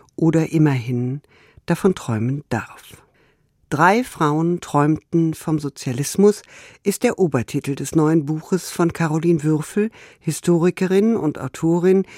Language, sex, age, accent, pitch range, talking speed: German, female, 50-69, German, 150-190 Hz, 110 wpm